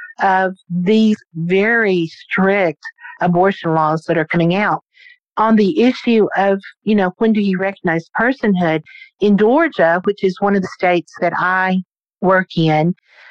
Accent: American